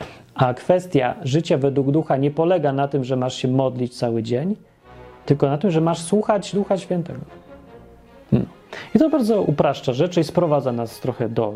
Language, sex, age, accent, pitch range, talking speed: Polish, male, 30-49, native, 125-175 Hz, 165 wpm